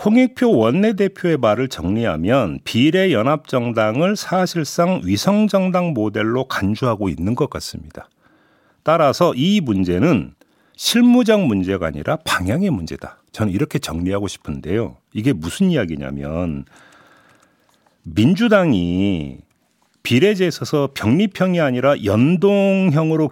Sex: male